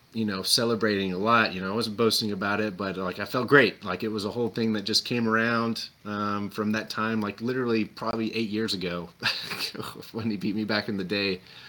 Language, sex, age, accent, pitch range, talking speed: English, male, 30-49, American, 100-115 Hz, 230 wpm